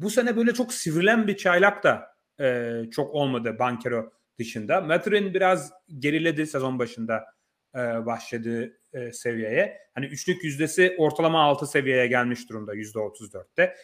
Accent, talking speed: native, 135 wpm